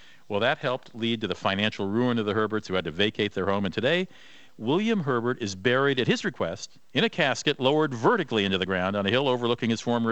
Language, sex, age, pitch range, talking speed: English, male, 50-69, 105-140 Hz, 235 wpm